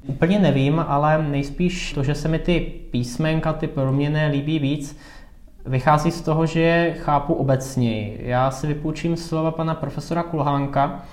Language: Czech